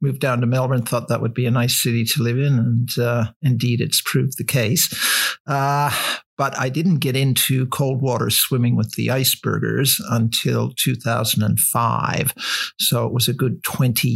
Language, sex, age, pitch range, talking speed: English, male, 50-69, 120-140 Hz, 175 wpm